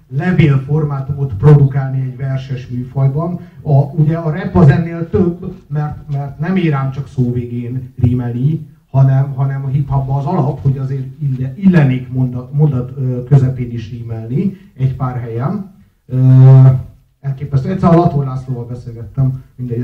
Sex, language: male, Hungarian